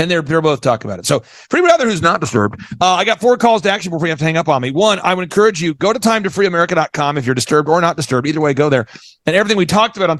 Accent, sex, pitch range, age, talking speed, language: American, male, 150-190 Hz, 40-59, 325 wpm, English